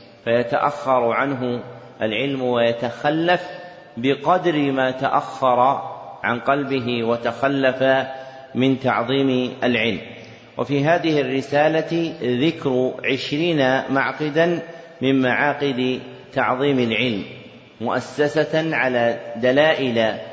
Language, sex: Arabic, male